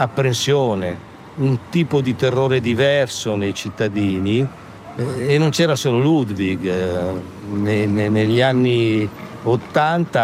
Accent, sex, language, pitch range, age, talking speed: native, male, Italian, 105-130 Hz, 60-79, 105 wpm